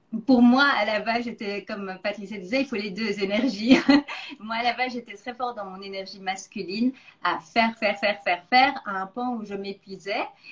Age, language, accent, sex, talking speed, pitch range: 40-59, French, French, female, 215 wpm, 190-235 Hz